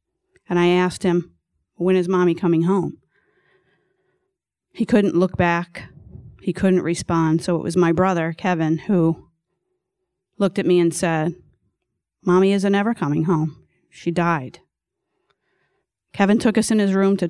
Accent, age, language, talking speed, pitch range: American, 30-49, English, 145 wpm, 165-195 Hz